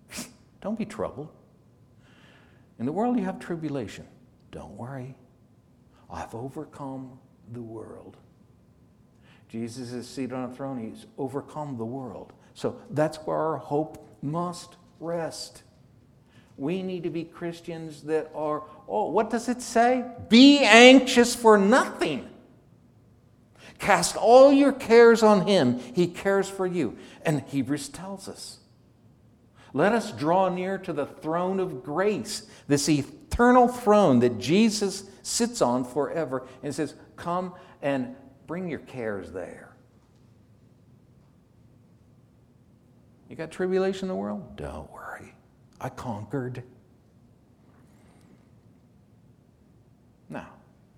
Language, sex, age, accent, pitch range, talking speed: English, male, 60-79, American, 125-190 Hz, 115 wpm